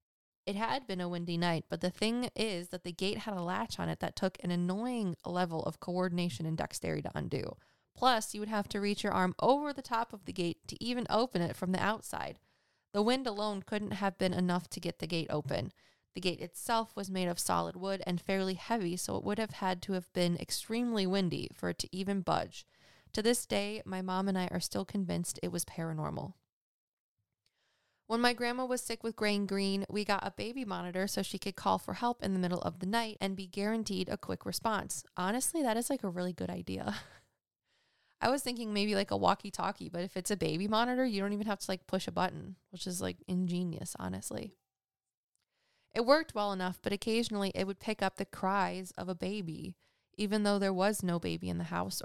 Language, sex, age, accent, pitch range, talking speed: English, female, 20-39, American, 175-215 Hz, 220 wpm